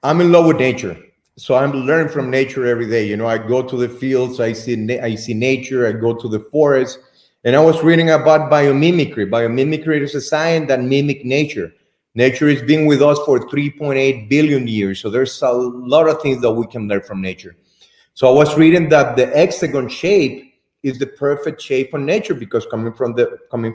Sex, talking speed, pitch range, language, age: male, 205 wpm, 125-150 Hz, English, 30-49